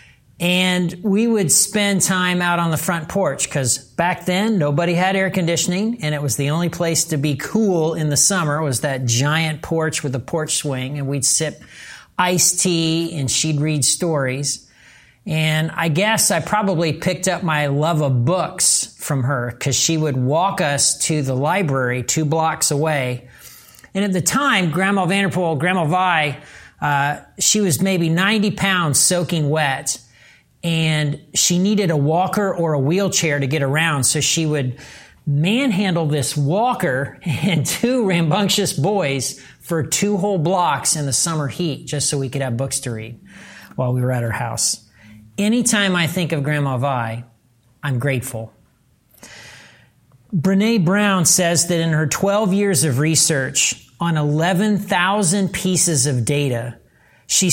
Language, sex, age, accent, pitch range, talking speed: English, male, 40-59, American, 140-185 Hz, 160 wpm